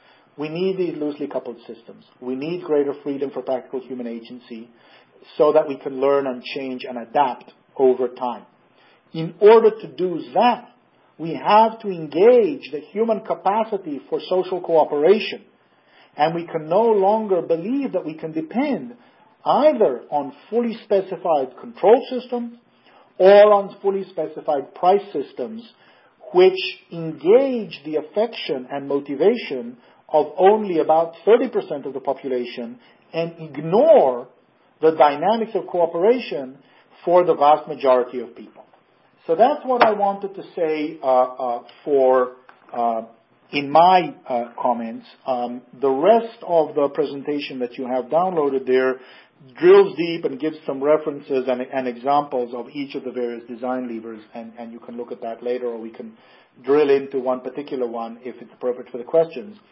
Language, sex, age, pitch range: English, male, 50-69, 130-195 Hz